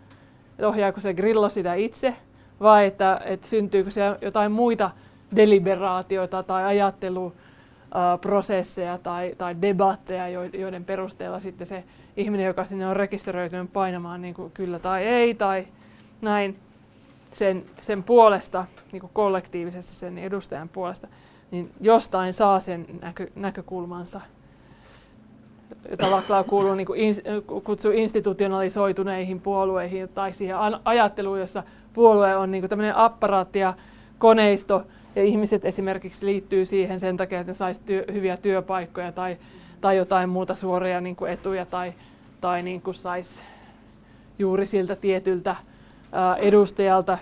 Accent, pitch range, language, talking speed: native, 185-200 Hz, Finnish, 115 wpm